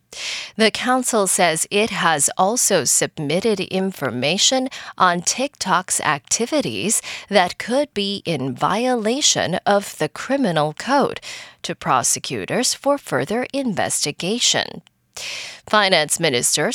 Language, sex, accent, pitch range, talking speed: English, female, American, 170-250 Hz, 95 wpm